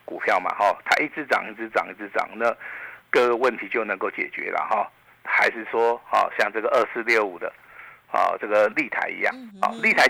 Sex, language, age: male, Chinese, 50-69